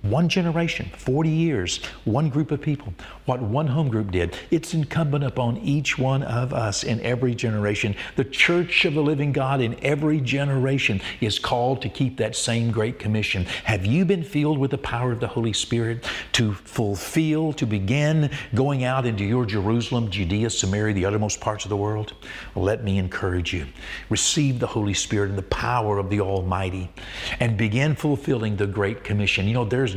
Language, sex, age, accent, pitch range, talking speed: English, male, 50-69, American, 105-135 Hz, 180 wpm